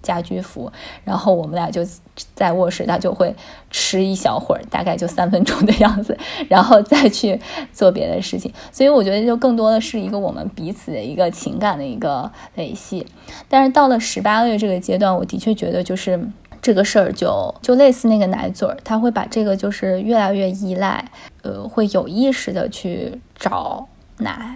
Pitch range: 190-235 Hz